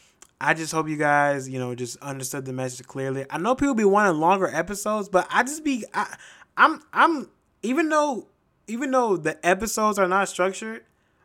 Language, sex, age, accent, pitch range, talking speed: English, male, 20-39, American, 130-185 Hz, 180 wpm